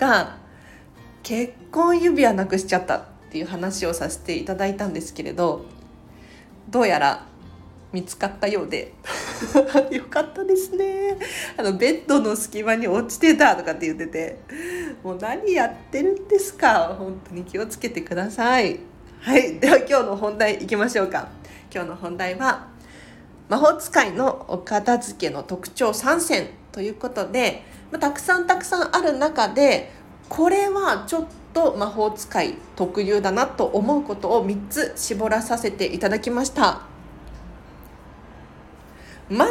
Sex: female